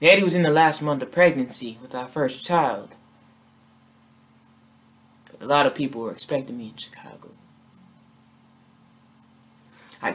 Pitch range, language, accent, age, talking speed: 115-160 Hz, English, American, 20-39, 135 wpm